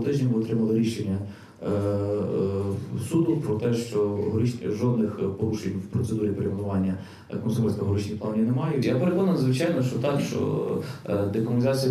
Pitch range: 105-125 Hz